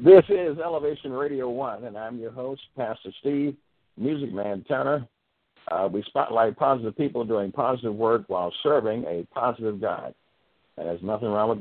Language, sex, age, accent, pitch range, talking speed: English, male, 60-79, American, 100-140 Hz, 165 wpm